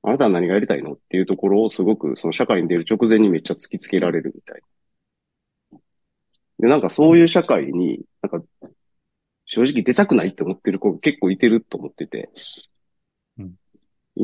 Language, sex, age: Japanese, male, 40-59